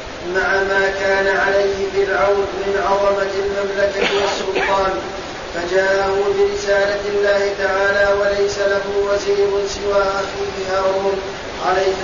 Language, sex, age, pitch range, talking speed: Arabic, male, 30-49, 195-200 Hz, 100 wpm